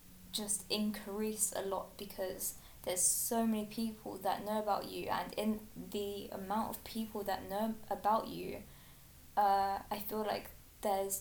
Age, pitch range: 20-39, 180-215 Hz